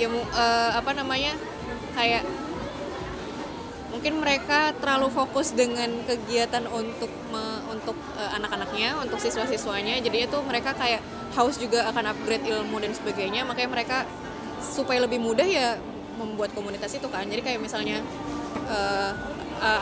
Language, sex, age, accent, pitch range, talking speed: Indonesian, female, 20-39, native, 220-260 Hz, 135 wpm